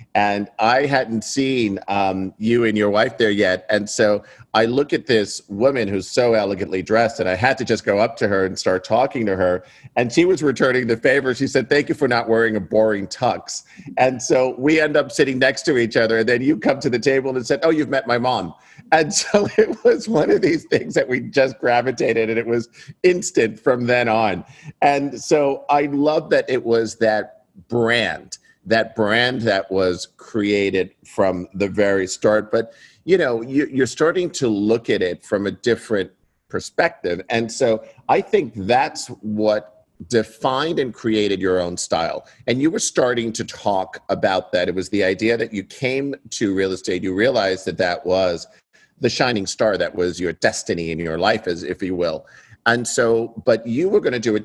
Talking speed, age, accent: 205 wpm, 50-69, American